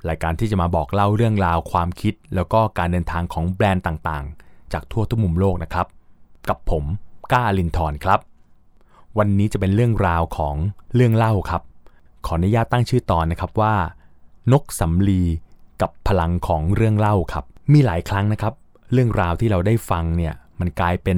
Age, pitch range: 20-39, 85-110 Hz